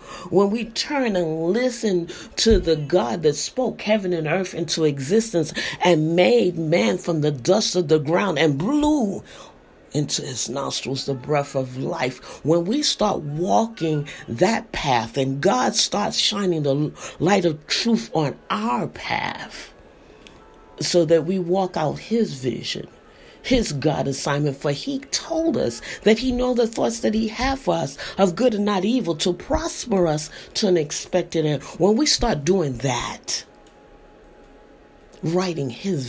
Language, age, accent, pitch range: English, 40-59, American, 140-200 Hz